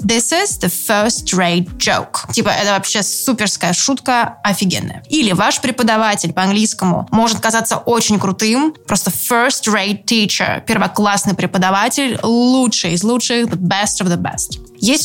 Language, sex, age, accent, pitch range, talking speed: Russian, female, 20-39, native, 195-245 Hz, 130 wpm